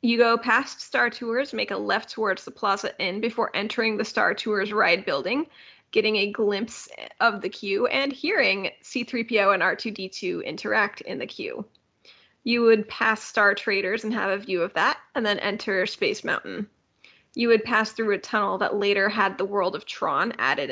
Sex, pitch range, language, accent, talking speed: female, 200-240 Hz, English, American, 185 wpm